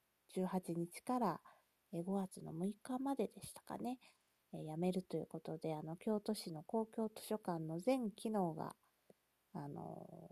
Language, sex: Japanese, female